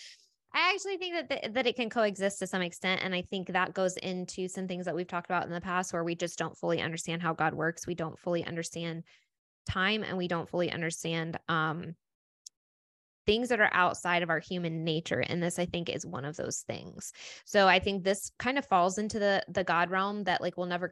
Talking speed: 230 wpm